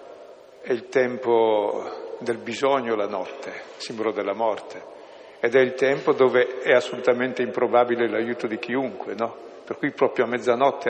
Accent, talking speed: native, 155 wpm